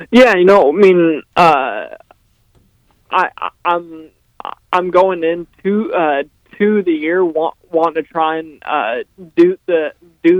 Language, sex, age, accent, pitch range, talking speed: English, male, 20-39, American, 150-175 Hz, 155 wpm